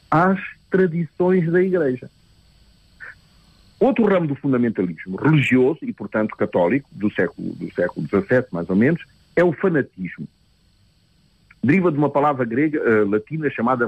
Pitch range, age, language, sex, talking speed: 110-165 Hz, 50-69, Portuguese, male, 135 wpm